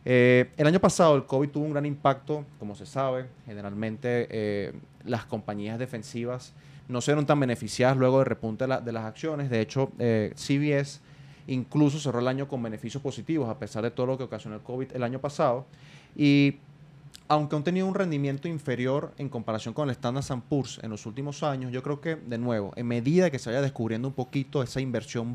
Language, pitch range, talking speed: Spanish, 115-145 Hz, 205 wpm